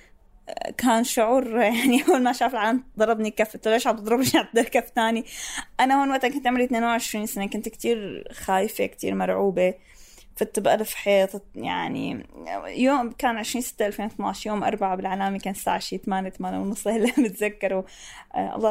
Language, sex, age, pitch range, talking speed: Arabic, female, 20-39, 210-255 Hz, 150 wpm